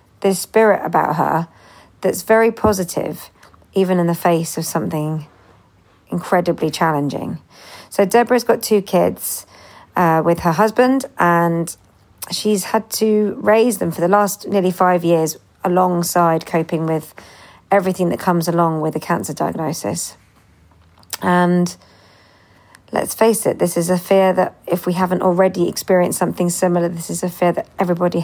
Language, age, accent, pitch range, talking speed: English, 40-59, British, 165-190 Hz, 145 wpm